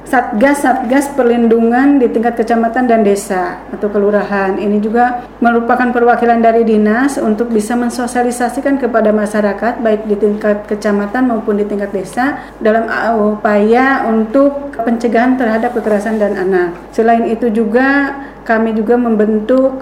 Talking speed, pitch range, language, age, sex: 125 wpm, 215-250 Hz, Indonesian, 40-59, female